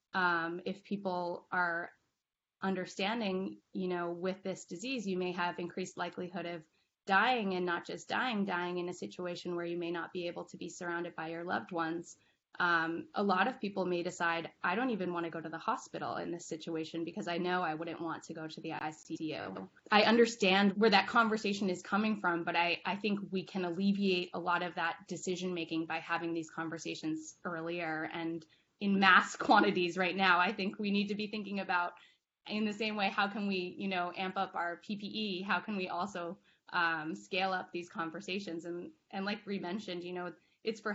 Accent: American